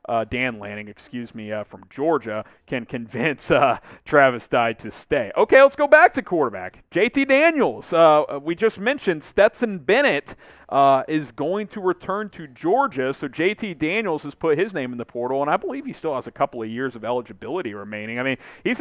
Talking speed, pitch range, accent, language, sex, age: 200 wpm, 130-195 Hz, American, English, male, 40-59